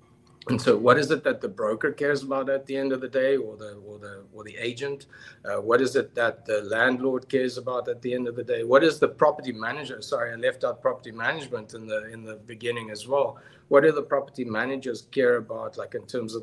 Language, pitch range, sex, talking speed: English, 115-140 Hz, male, 245 wpm